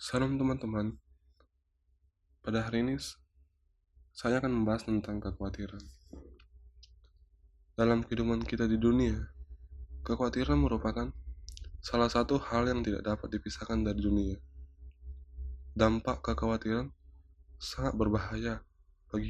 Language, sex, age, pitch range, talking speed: Indonesian, male, 20-39, 75-110 Hz, 95 wpm